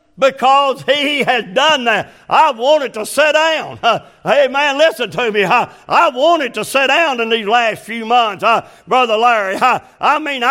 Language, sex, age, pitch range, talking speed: English, male, 60-79, 230-280 Hz, 165 wpm